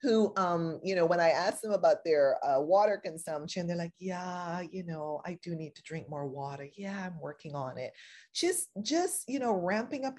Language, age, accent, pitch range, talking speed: English, 30-49, American, 150-200 Hz, 210 wpm